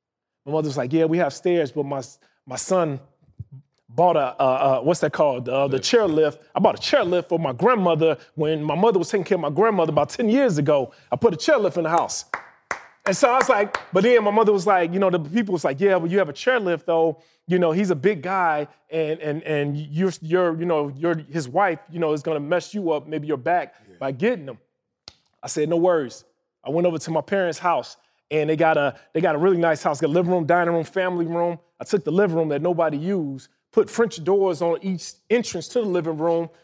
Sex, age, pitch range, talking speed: male, 20-39, 160-205 Hz, 245 wpm